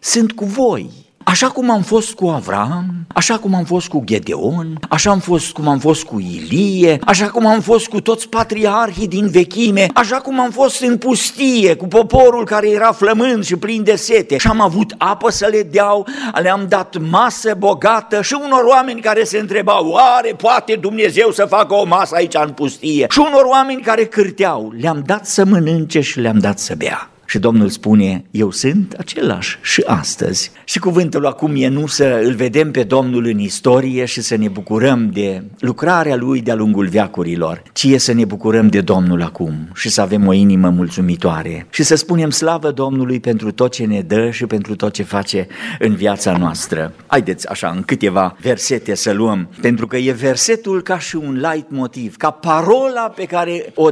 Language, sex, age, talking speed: Romanian, male, 50-69, 190 wpm